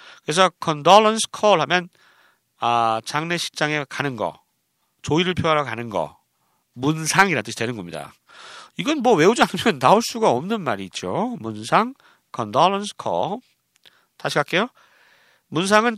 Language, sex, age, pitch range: Korean, male, 40-59, 125-195 Hz